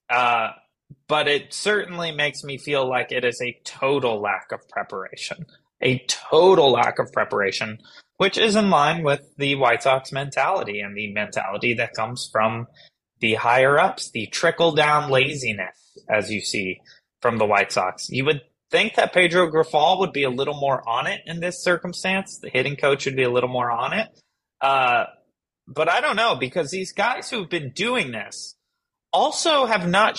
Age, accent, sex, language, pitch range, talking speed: 20-39, American, male, English, 125-180 Hz, 175 wpm